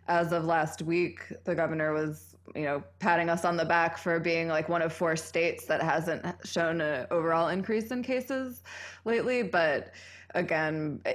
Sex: female